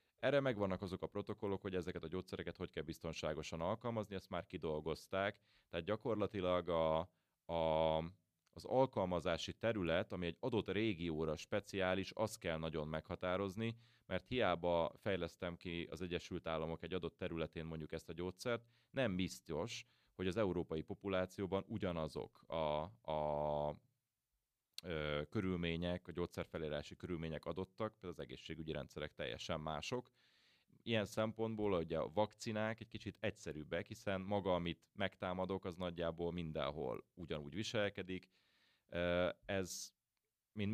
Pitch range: 80-100 Hz